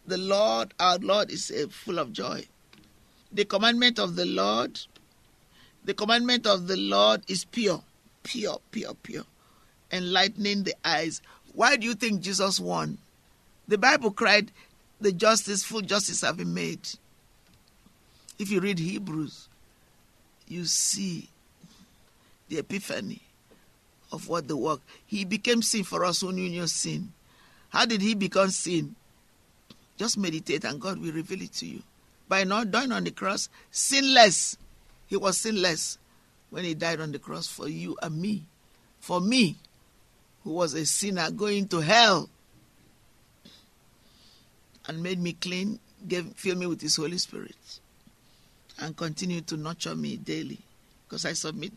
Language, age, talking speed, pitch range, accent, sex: English, 50-69, 145 wpm, 170-210 Hz, Nigerian, male